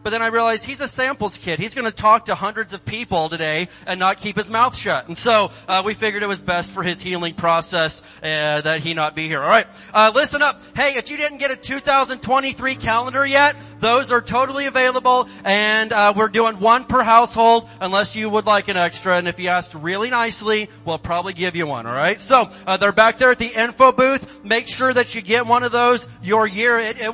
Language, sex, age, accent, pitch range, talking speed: English, male, 30-49, American, 185-245 Hz, 235 wpm